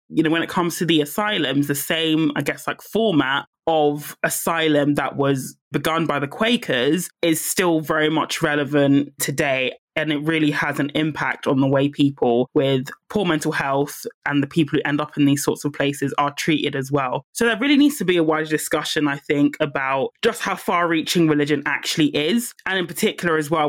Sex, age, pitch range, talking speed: male, 20-39, 145-160 Hz, 205 wpm